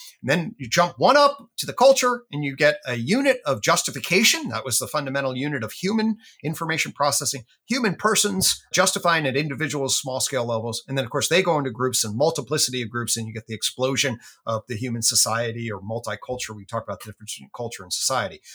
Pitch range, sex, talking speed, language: 125-185 Hz, male, 205 wpm, English